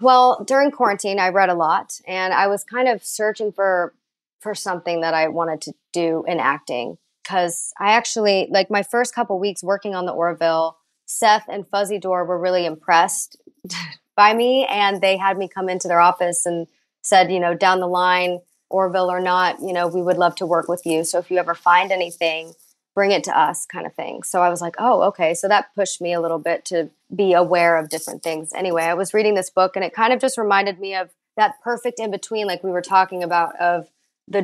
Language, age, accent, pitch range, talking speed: English, 20-39, American, 175-200 Hz, 225 wpm